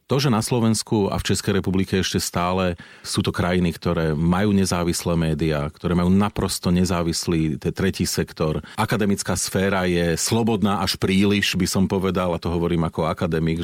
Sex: male